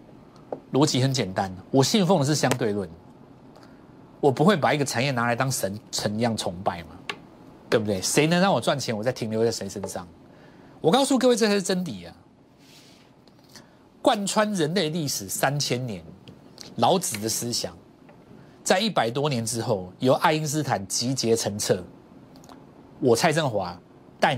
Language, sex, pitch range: Chinese, male, 110-165 Hz